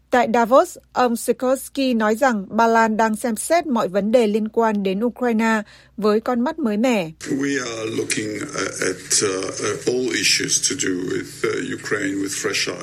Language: Vietnamese